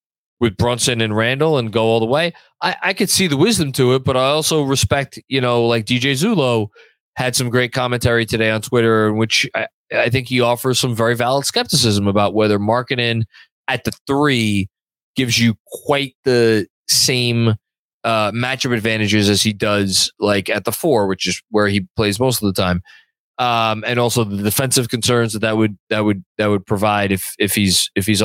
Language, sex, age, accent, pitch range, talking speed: English, male, 20-39, American, 110-145 Hz, 200 wpm